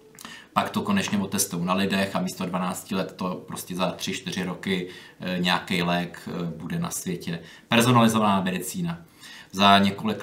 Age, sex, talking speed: 20-39, male, 140 wpm